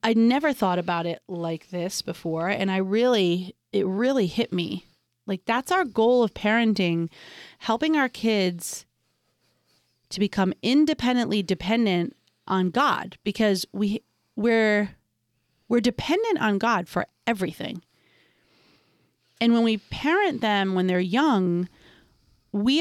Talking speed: 125 wpm